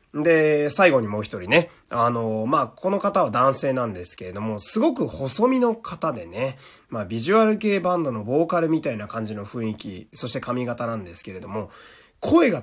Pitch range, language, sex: 115-170 Hz, Japanese, male